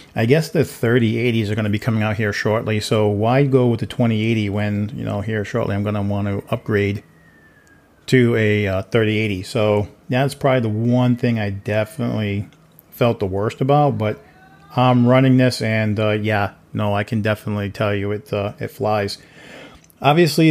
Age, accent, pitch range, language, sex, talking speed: 40-59, American, 105-120 Hz, English, male, 180 wpm